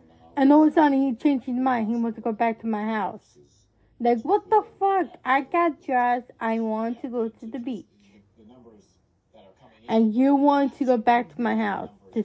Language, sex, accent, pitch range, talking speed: English, female, American, 210-290 Hz, 200 wpm